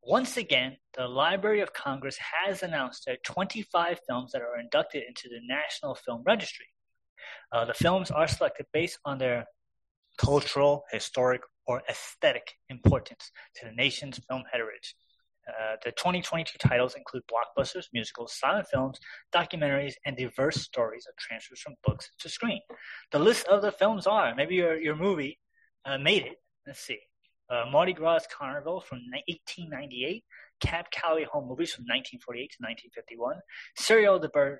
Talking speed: 145 wpm